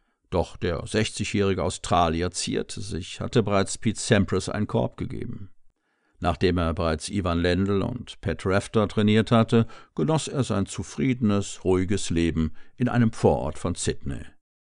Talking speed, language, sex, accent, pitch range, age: 140 wpm, German, male, German, 90-115 Hz, 50-69